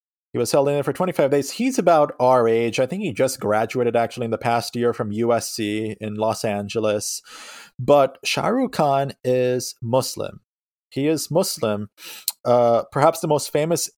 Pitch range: 115-145 Hz